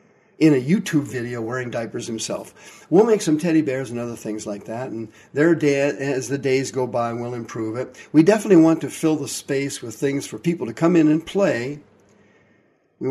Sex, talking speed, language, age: male, 200 wpm, English, 50-69